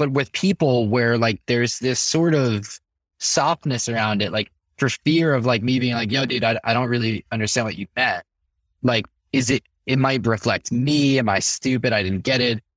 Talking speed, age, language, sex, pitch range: 205 wpm, 20-39, English, male, 105-140 Hz